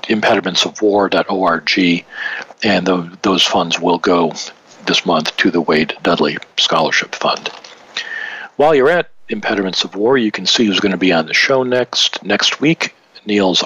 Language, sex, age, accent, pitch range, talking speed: English, male, 50-69, American, 95-120 Hz, 155 wpm